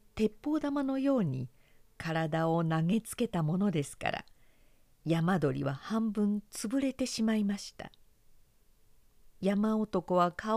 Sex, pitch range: female, 155-225 Hz